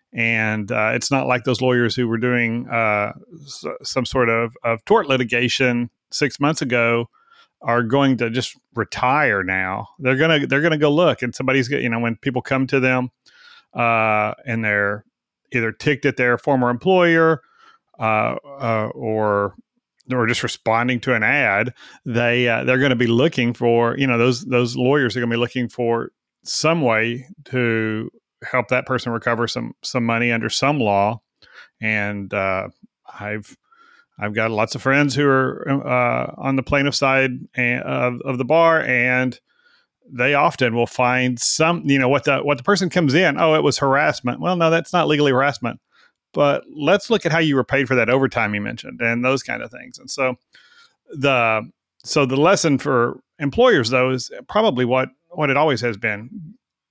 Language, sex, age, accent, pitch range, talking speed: English, male, 40-59, American, 115-140 Hz, 175 wpm